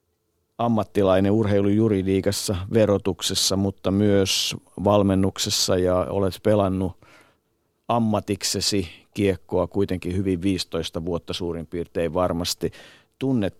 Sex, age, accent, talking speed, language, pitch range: male, 50-69, native, 85 wpm, Finnish, 85-100 Hz